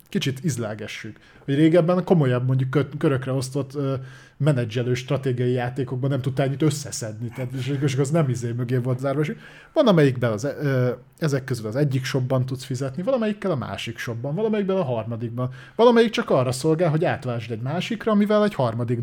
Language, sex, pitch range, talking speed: Hungarian, male, 120-145 Hz, 150 wpm